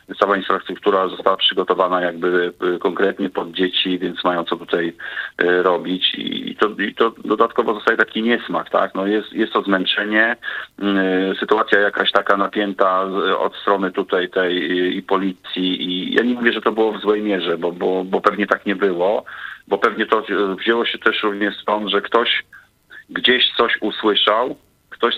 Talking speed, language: 160 wpm, Polish